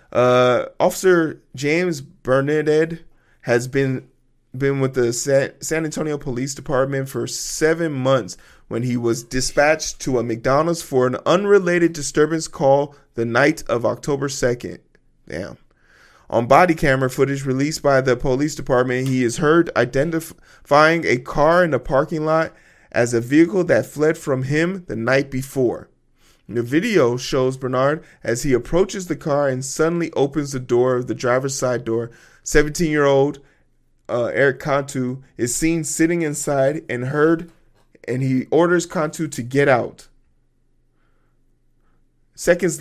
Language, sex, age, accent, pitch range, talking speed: English, male, 20-39, American, 130-160 Hz, 140 wpm